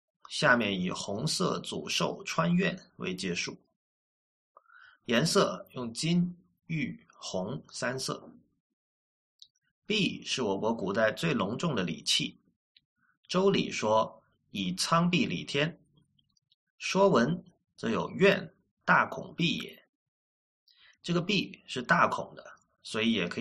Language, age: Chinese, 30-49